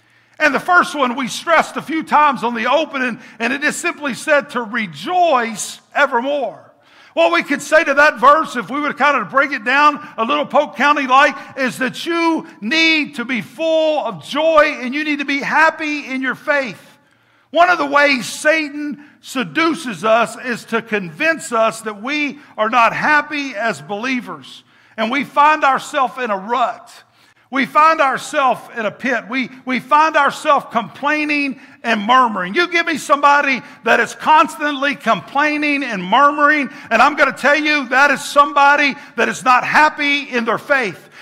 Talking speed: 180 wpm